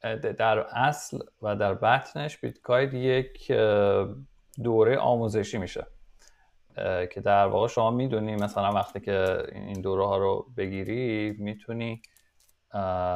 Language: Persian